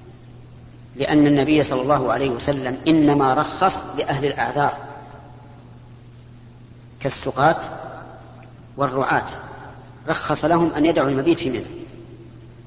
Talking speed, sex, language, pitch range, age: 90 wpm, female, Arabic, 120-155 Hz, 40-59